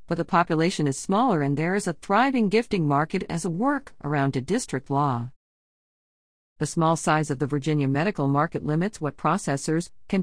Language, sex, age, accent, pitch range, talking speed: English, female, 50-69, American, 135-170 Hz, 180 wpm